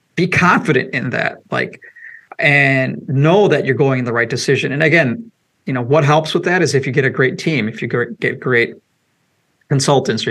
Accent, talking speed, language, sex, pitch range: American, 205 wpm, English, male, 130-175 Hz